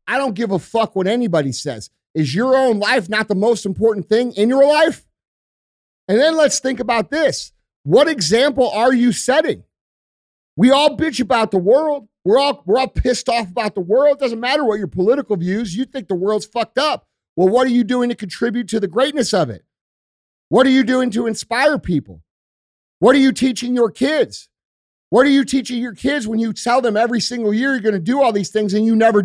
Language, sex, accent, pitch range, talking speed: English, male, American, 190-255 Hz, 220 wpm